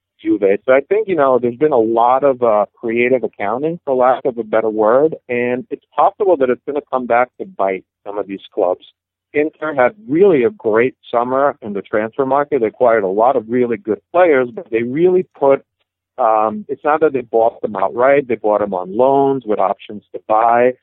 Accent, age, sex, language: American, 40-59, male, English